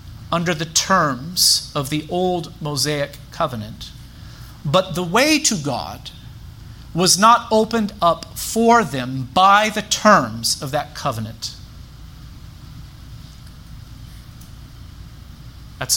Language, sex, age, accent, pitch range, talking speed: English, male, 40-59, American, 120-170 Hz, 100 wpm